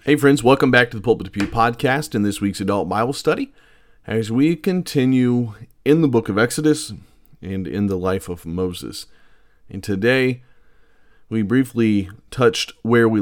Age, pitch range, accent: 40-59, 100-120 Hz, American